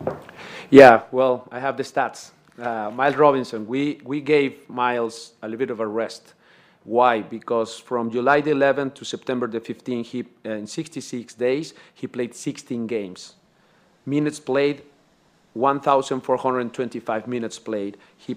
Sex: male